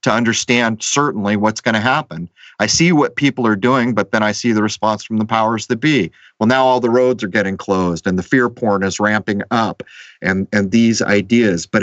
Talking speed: 225 wpm